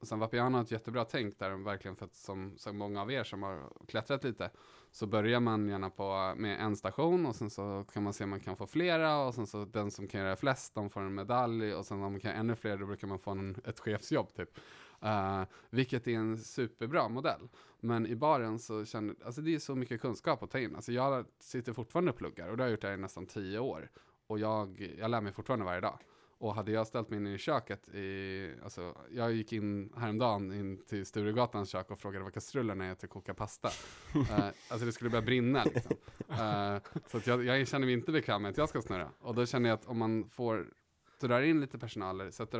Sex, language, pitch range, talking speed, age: male, English, 100-120 Hz, 235 wpm, 20-39